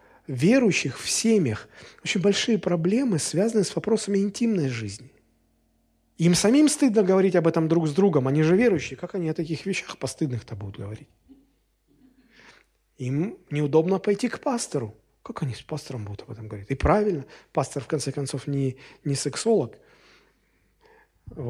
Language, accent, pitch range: Russian, native, 135-200 Hz